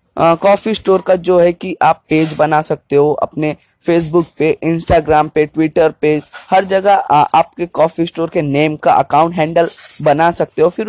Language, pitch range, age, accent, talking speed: Hindi, 155-185 Hz, 20-39, native, 180 wpm